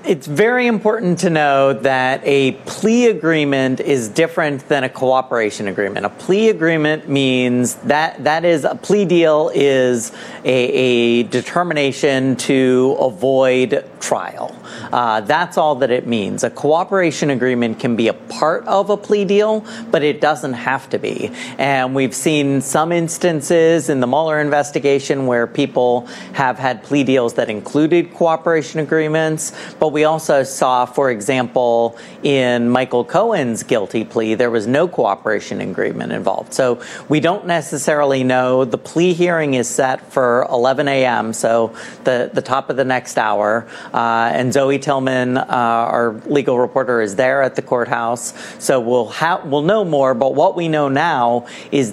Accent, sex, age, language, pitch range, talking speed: American, male, 40-59, English, 125-155 Hz, 155 wpm